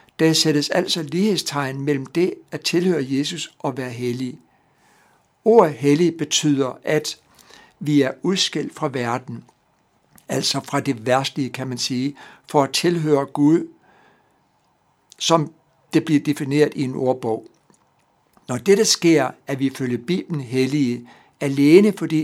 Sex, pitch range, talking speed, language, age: male, 135-160 Hz, 135 wpm, Danish, 60-79